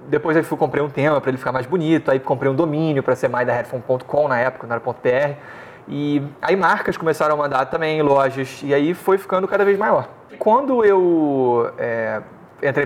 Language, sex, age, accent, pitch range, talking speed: Portuguese, male, 20-39, Brazilian, 125-165 Hz, 195 wpm